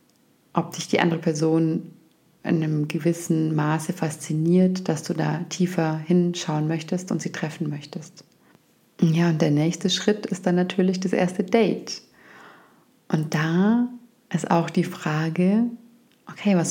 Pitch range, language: 160-185 Hz, German